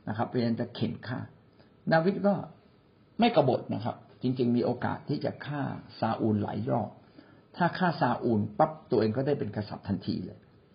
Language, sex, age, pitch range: Thai, male, 60-79, 110-140 Hz